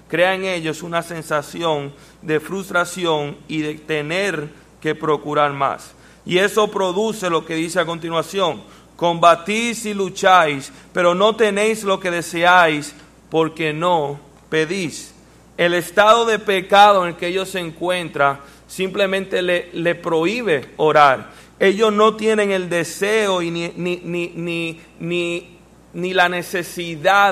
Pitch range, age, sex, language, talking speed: 155-195 Hz, 30-49, male, English, 135 wpm